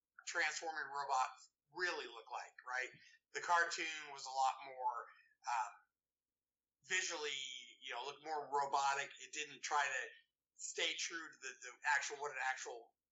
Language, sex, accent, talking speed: English, male, American, 145 wpm